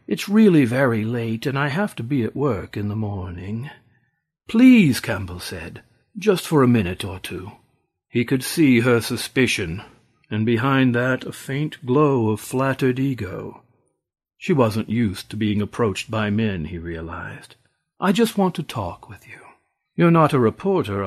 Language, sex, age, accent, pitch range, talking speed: English, male, 50-69, American, 100-140 Hz, 165 wpm